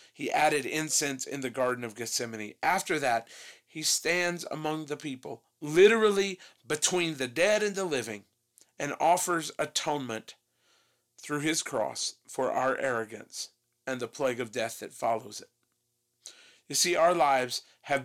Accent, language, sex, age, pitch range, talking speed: American, English, male, 40-59, 125-165 Hz, 145 wpm